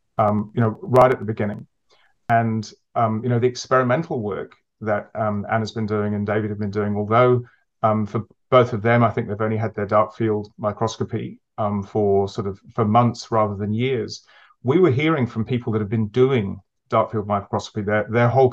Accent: British